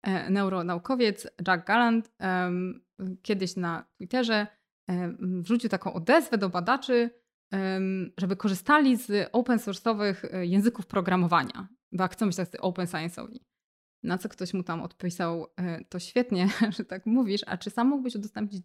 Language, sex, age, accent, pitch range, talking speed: Polish, female, 20-39, native, 190-235 Hz, 135 wpm